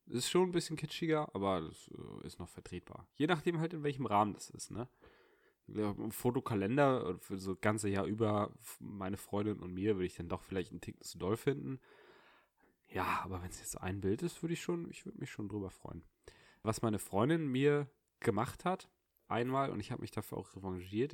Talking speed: 200 wpm